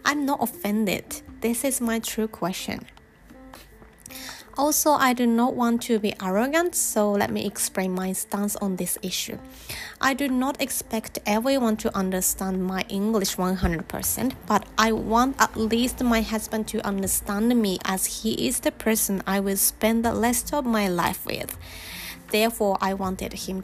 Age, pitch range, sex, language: 20-39, 185-240 Hz, female, Japanese